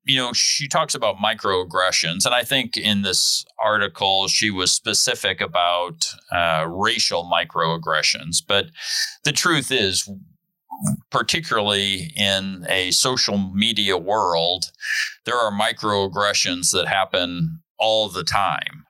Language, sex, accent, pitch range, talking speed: English, male, American, 90-120 Hz, 120 wpm